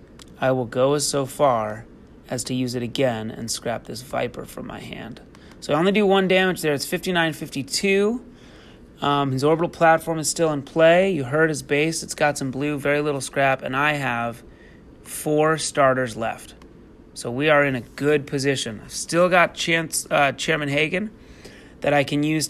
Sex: male